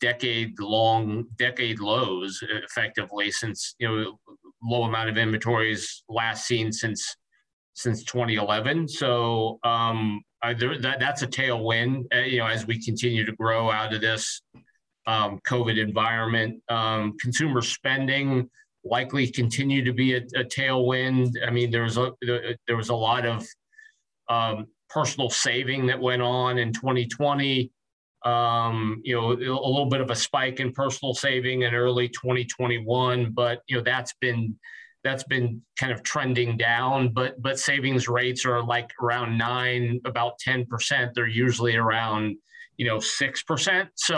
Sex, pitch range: male, 115-130 Hz